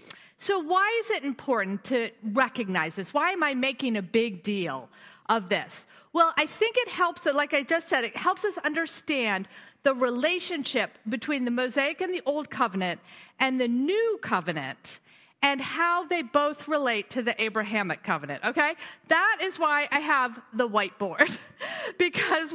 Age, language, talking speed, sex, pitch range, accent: 40-59, English, 165 wpm, female, 255-350 Hz, American